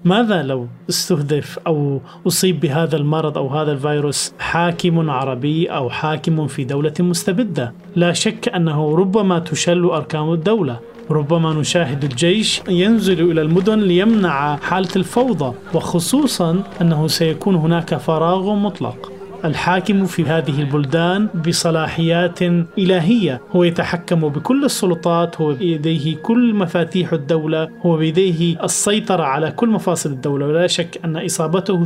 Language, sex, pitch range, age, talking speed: Arabic, male, 150-180 Hz, 30-49, 120 wpm